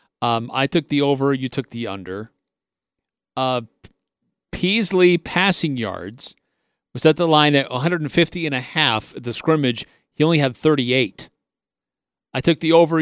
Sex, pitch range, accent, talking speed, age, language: male, 125-160 Hz, American, 150 wpm, 40-59, English